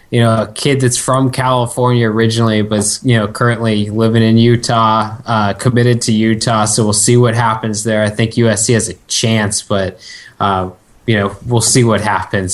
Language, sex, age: English, male, 20-39